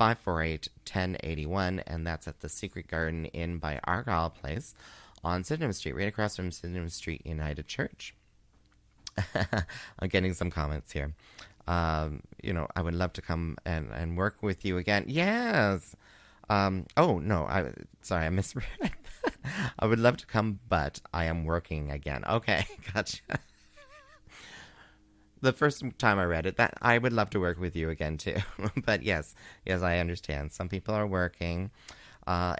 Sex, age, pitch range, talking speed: male, 30-49, 80-110 Hz, 160 wpm